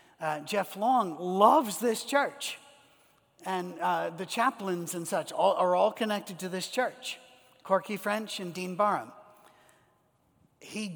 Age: 50-69